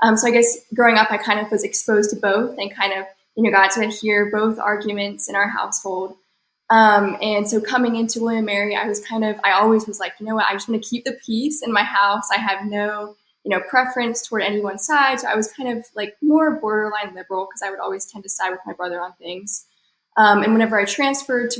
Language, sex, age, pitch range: English, female, 10-29, 195-220 Hz